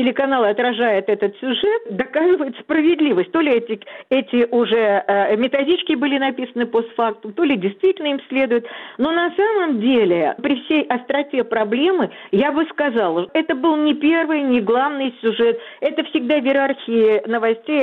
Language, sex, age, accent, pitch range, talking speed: Russian, female, 50-69, native, 210-290 Hz, 150 wpm